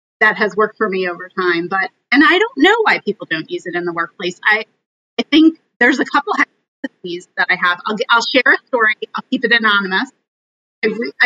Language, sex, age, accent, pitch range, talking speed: English, female, 30-49, American, 200-260 Hz, 225 wpm